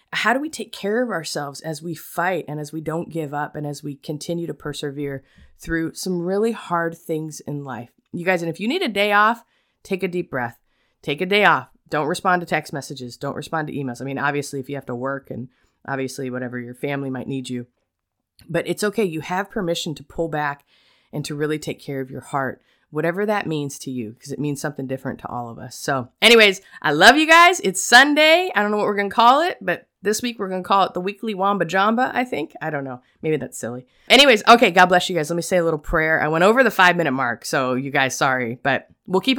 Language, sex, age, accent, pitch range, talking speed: English, female, 20-39, American, 140-190 Hz, 250 wpm